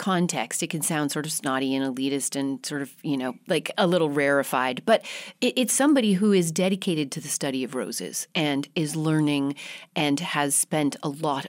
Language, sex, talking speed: English, female, 195 wpm